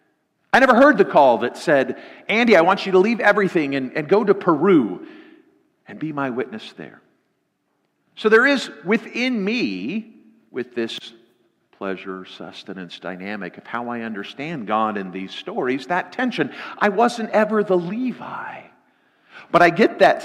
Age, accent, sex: 50-69, American, male